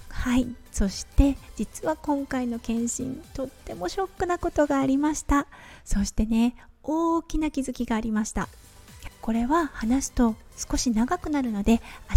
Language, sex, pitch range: Japanese, female, 220-295 Hz